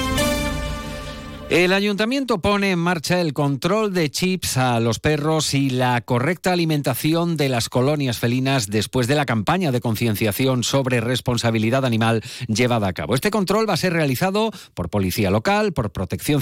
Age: 40-59